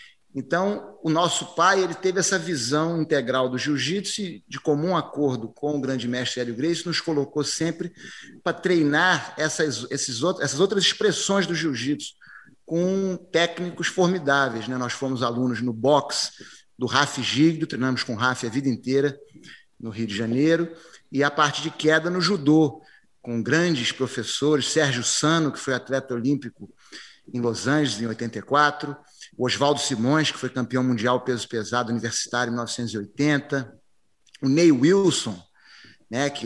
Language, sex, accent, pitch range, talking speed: Portuguese, male, Brazilian, 125-170 Hz, 155 wpm